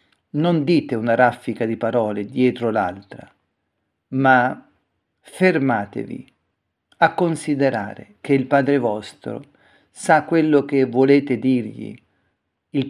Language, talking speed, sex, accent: Italian, 100 wpm, male, native